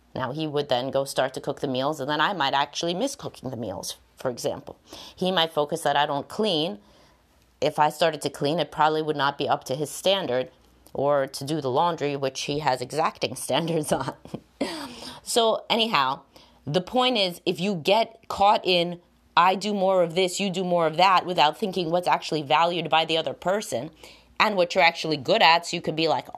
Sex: female